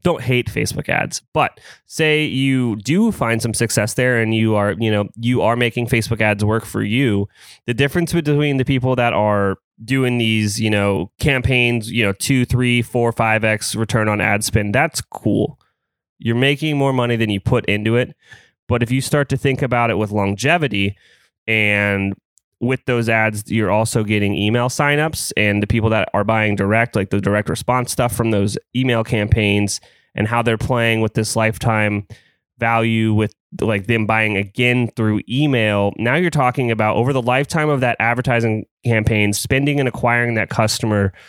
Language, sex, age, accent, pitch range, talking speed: English, male, 20-39, American, 105-125 Hz, 180 wpm